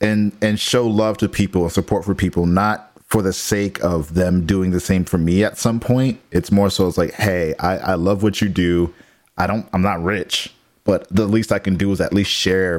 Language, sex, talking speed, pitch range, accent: English, male, 240 wpm, 90-110 Hz, American